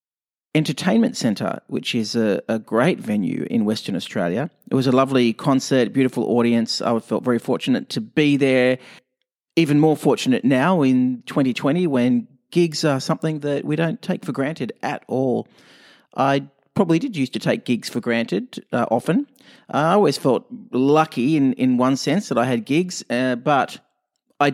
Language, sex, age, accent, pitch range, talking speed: English, male, 40-59, Australian, 120-165 Hz, 170 wpm